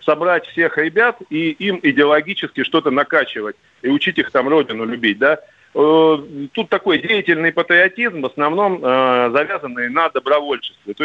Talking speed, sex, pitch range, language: 140 wpm, male, 120-165 Hz, Russian